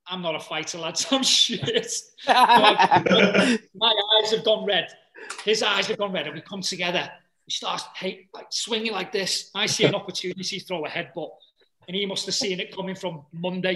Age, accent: 30-49, British